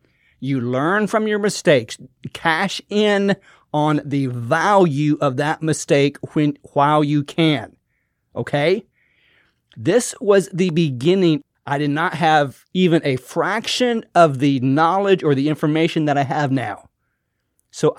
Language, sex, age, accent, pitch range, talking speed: English, male, 40-59, American, 135-180 Hz, 135 wpm